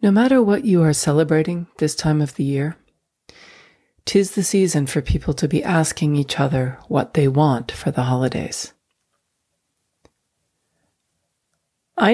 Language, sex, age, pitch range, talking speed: English, female, 50-69, 145-190 Hz, 140 wpm